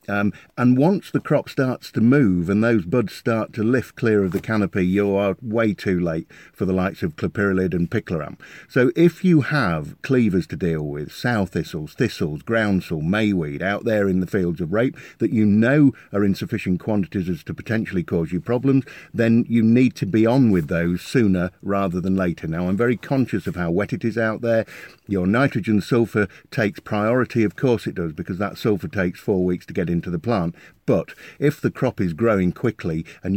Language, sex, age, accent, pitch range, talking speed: English, male, 50-69, British, 90-115 Hz, 205 wpm